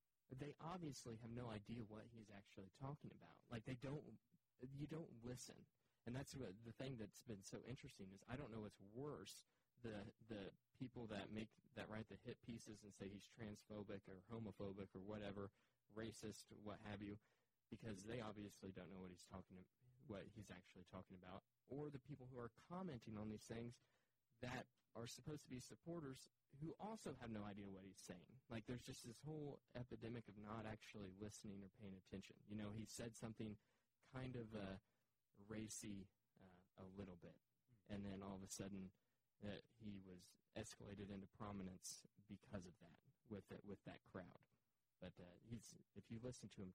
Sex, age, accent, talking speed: male, 20-39, American, 185 wpm